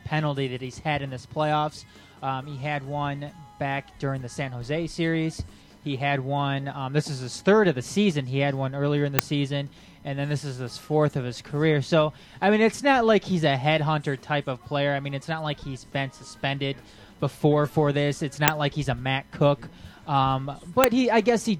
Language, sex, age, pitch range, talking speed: English, male, 20-39, 140-175 Hz, 220 wpm